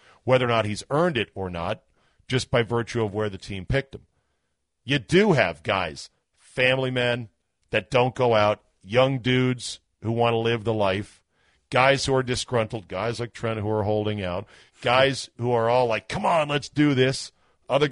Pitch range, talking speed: 100-125 Hz, 190 wpm